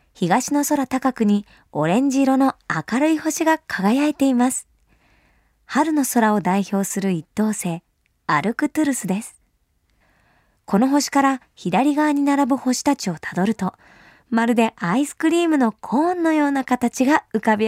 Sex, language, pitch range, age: male, Japanese, 205-285 Hz, 20-39